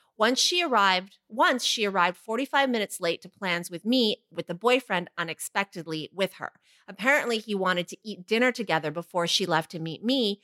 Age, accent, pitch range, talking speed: 30-49, American, 175-230 Hz, 185 wpm